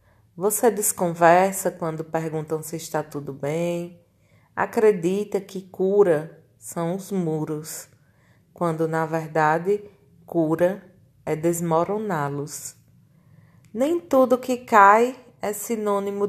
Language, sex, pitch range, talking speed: Portuguese, female, 140-200 Hz, 95 wpm